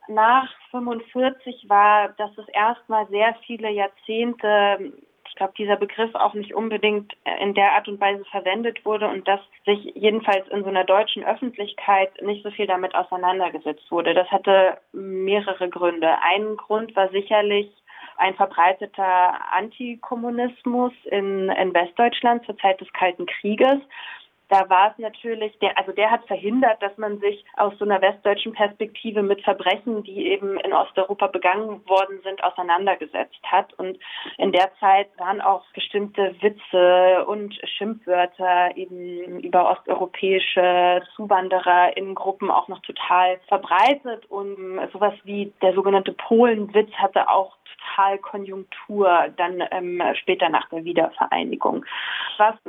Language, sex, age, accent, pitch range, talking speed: German, female, 20-39, German, 190-215 Hz, 140 wpm